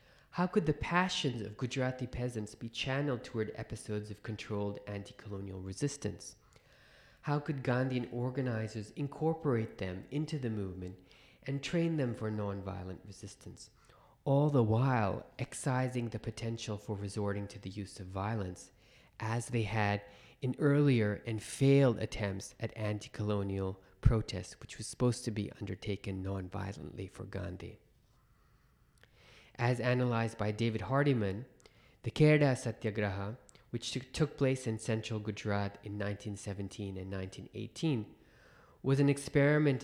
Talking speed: 130 wpm